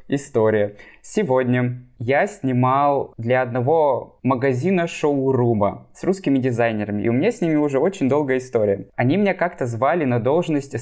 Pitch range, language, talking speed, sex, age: 115-150 Hz, Russian, 145 wpm, male, 20-39